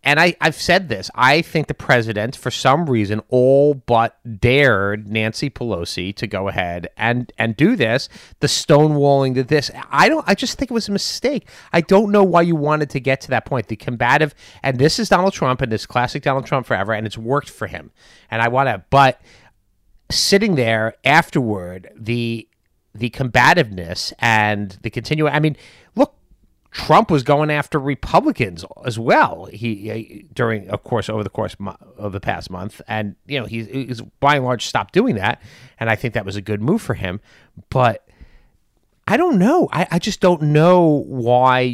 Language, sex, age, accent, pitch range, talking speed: English, male, 30-49, American, 110-150 Hz, 185 wpm